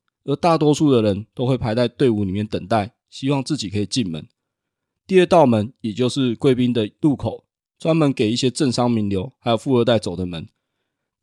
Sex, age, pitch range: male, 20-39, 110-135 Hz